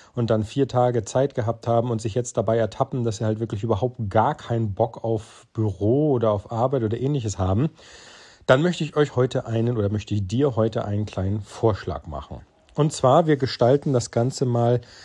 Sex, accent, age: male, German, 40-59